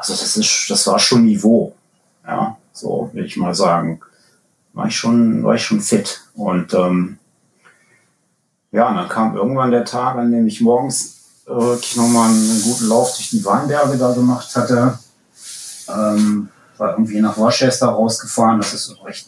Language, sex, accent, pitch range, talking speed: German, male, German, 105-125 Hz, 170 wpm